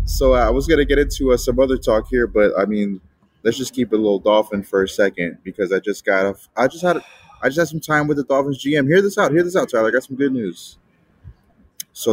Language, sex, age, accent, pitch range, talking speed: English, male, 20-39, American, 95-120 Hz, 265 wpm